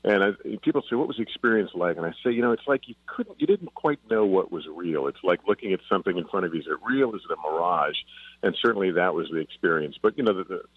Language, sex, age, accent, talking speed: English, male, 50-69, American, 290 wpm